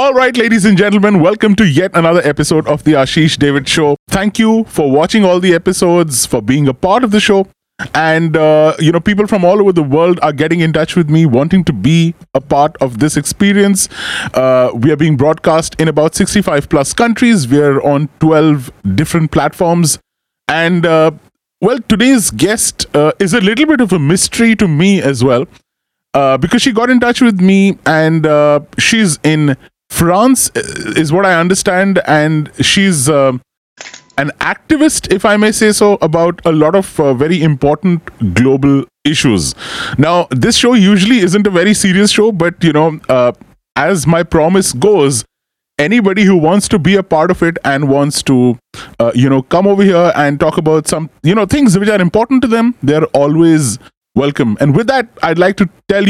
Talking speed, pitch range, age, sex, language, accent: 190 wpm, 150-205 Hz, 30-49, male, English, Indian